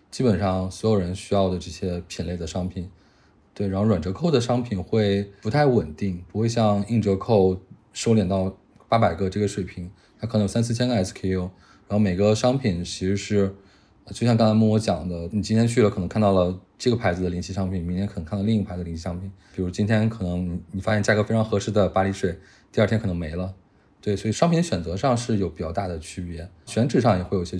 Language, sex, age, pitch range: English, male, 20-39, 95-110 Hz